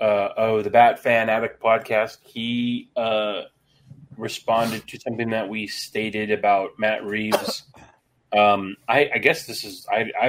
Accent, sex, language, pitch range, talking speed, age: American, male, English, 105-130 Hz, 150 wpm, 30-49